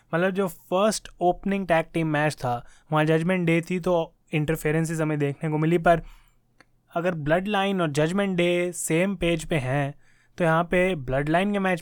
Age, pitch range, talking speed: 20-39, 150-180 Hz, 185 wpm